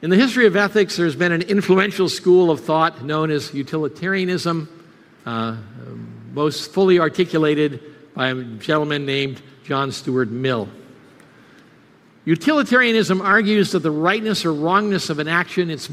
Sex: male